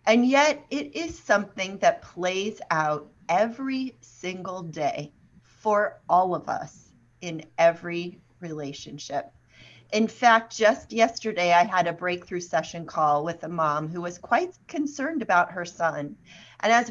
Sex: female